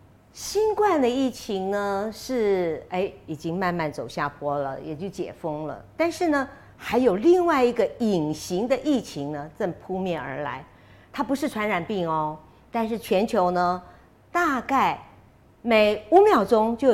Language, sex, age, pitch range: Chinese, female, 50-69, 170-260 Hz